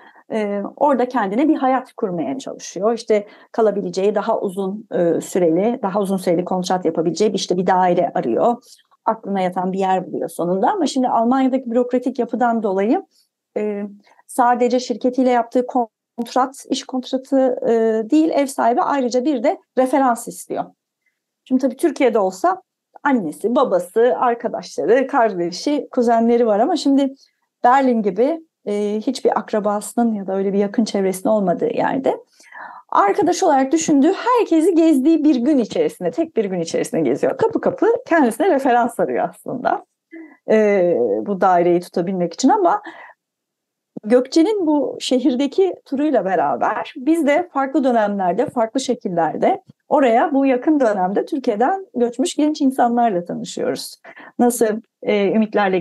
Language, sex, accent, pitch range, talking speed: Turkish, female, native, 205-285 Hz, 130 wpm